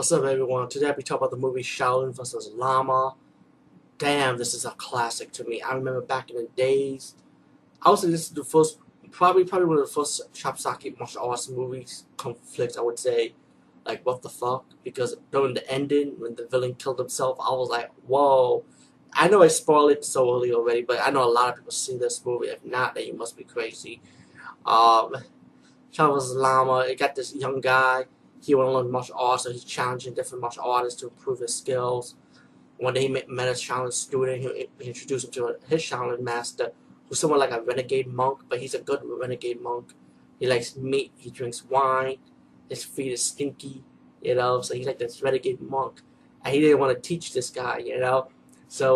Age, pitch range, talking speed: 20-39, 125-145 Hz, 210 wpm